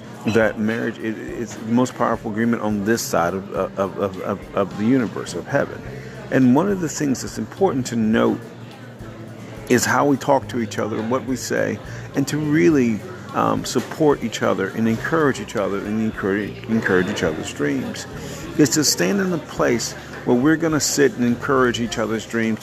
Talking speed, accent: 190 wpm, American